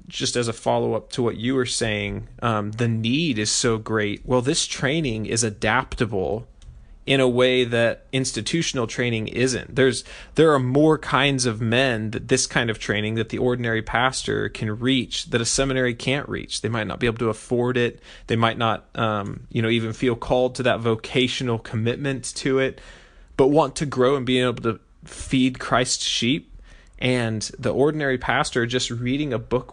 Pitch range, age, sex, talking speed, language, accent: 110-130 Hz, 20-39, male, 185 wpm, English, American